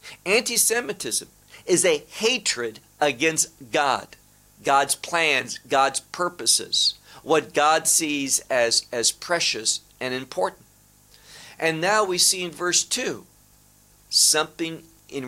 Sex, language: male, English